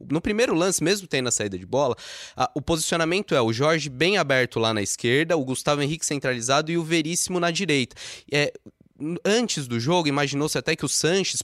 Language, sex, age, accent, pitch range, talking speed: Portuguese, male, 20-39, Brazilian, 120-175 Hz, 200 wpm